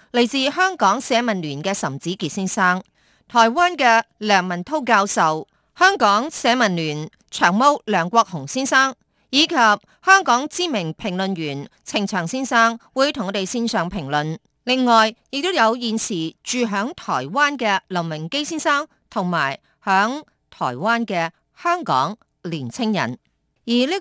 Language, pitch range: Chinese, 170-240 Hz